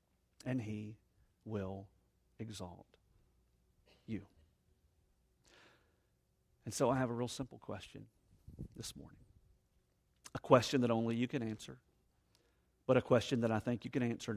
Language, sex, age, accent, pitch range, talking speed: English, male, 50-69, American, 95-130 Hz, 130 wpm